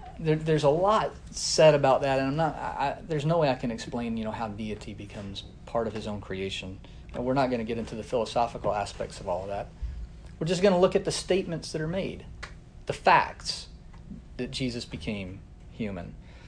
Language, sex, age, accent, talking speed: English, male, 40-59, American, 205 wpm